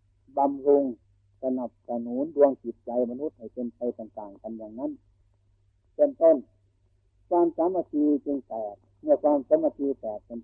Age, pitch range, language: 60-79, 100-155 Hz, Thai